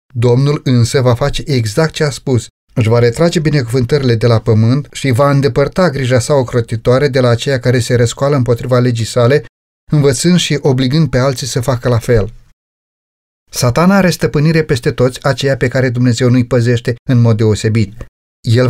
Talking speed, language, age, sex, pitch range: 175 wpm, Romanian, 30-49, male, 120-150 Hz